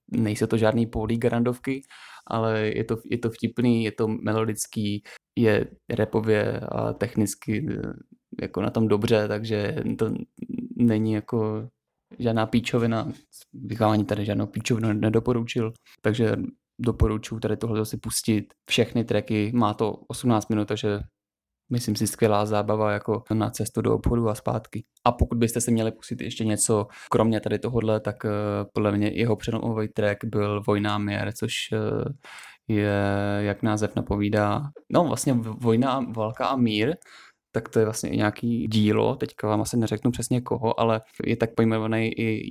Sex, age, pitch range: male, 20-39, 105-115 Hz